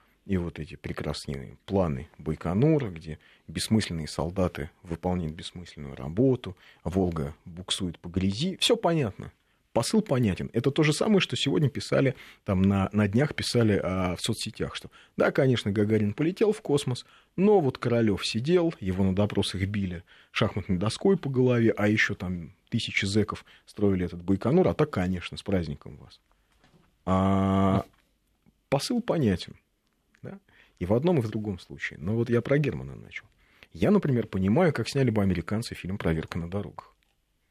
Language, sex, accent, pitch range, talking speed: Russian, male, native, 85-120 Hz, 150 wpm